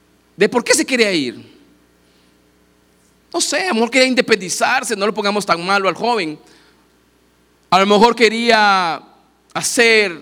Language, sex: Spanish, male